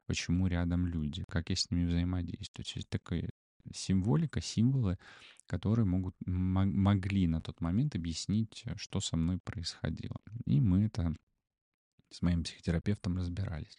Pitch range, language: 85-105 Hz, Russian